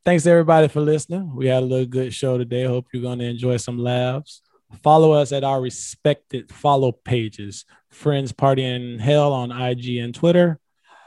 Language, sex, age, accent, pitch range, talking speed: English, male, 20-39, American, 115-145 Hz, 175 wpm